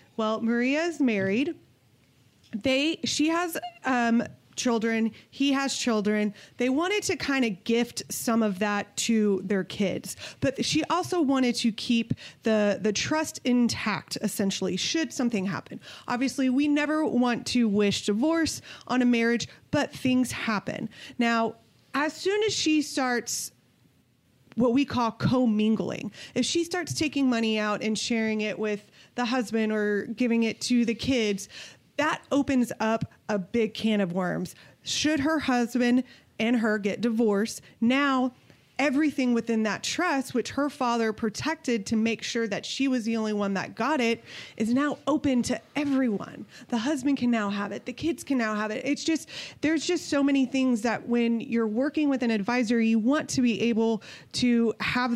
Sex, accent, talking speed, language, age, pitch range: female, American, 165 wpm, English, 30-49, 215-270 Hz